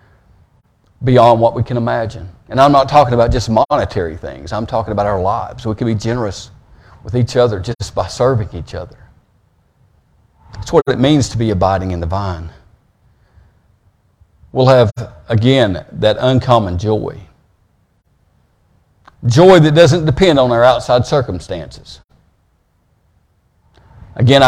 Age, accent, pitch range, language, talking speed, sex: 50-69, American, 100-130 Hz, English, 135 wpm, male